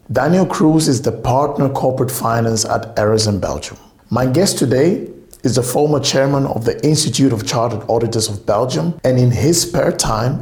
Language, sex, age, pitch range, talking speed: Dutch, male, 50-69, 110-140 Hz, 175 wpm